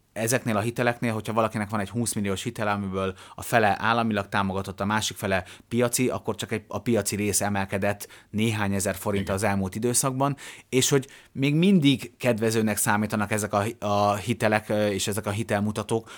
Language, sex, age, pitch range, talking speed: Hungarian, male, 30-49, 100-120 Hz, 165 wpm